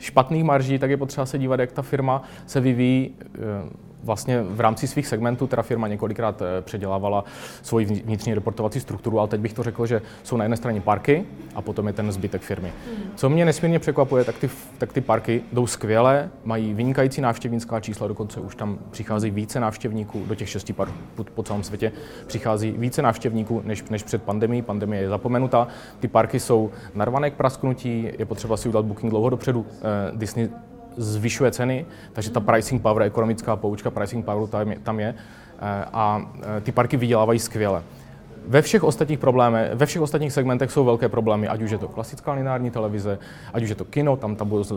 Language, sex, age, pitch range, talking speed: Czech, male, 20-39, 105-125 Hz, 185 wpm